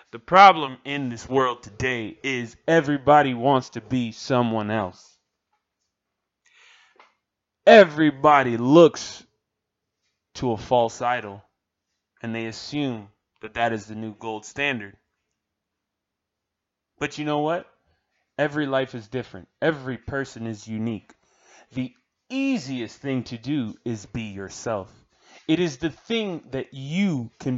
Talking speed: 120 wpm